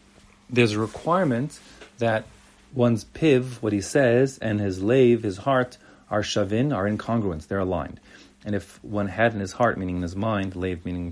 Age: 40-59